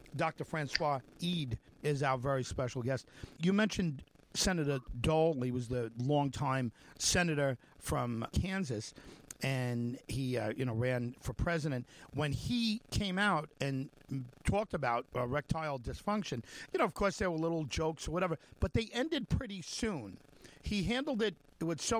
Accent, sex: American, male